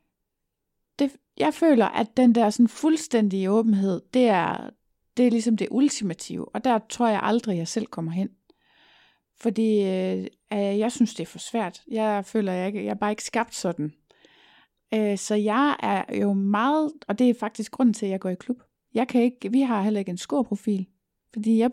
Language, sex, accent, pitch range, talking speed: Danish, female, native, 195-235 Hz, 205 wpm